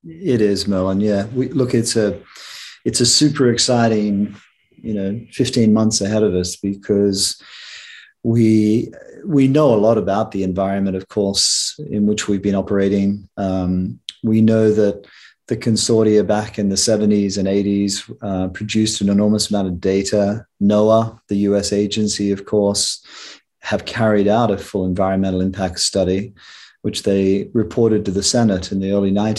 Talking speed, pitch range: 155 wpm, 95-110 Hz